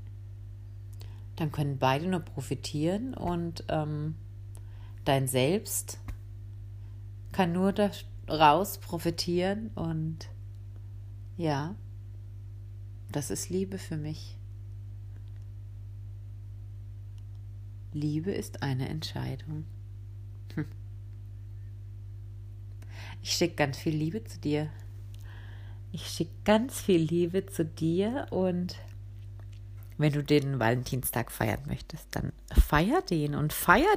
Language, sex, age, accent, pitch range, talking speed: German, female, 40-59, German, 100-165 Hz, 90 wpm